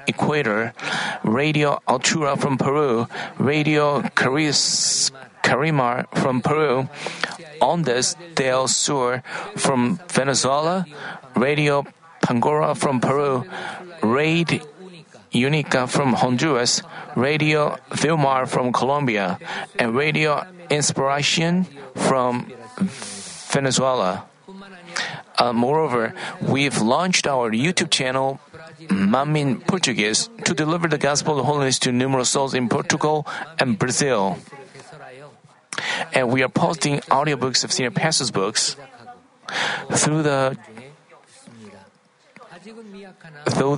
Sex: male